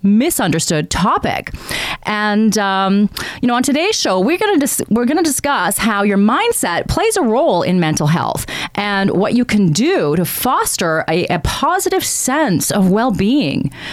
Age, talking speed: 30-49, 165 wpm